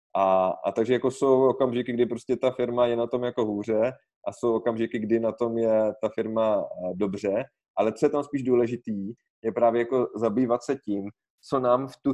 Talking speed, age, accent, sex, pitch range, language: 205 wpm, 20-39, native, male, 100-120 Hz, Czech